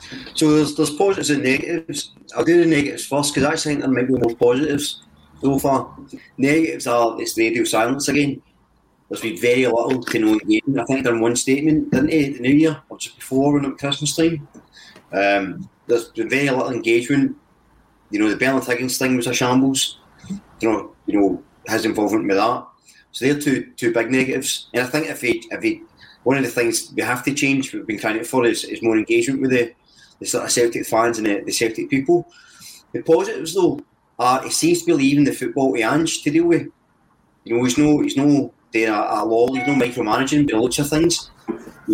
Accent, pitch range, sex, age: British, 115-160 Hz, male, 30-49